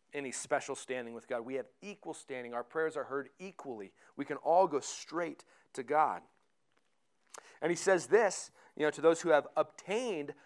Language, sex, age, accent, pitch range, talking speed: English, male, 30-49, American, 145-180 Hz, 185 wpm